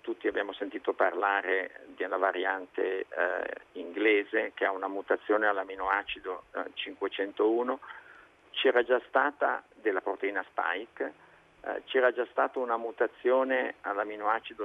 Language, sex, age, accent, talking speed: Italian, male, 50-69, native, 110 wpm